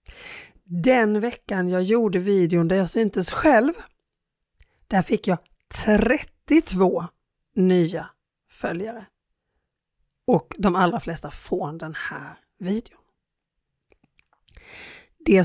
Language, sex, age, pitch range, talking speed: Swedish, female, 40-59, 175-220 Hz, 95 wpm